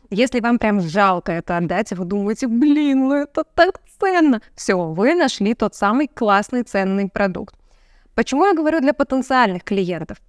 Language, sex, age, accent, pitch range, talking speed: Russian, female, 20-39, native, 210-275 Hz, 165 wpm